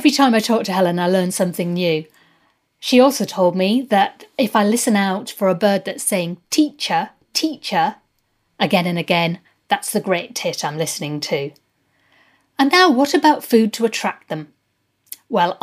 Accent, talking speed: British, 175 wpm